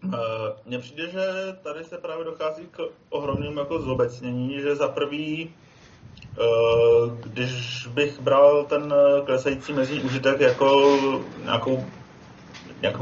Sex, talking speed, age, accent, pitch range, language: male, 115 wpm, 30-49, native, 125-140 Hz, Czech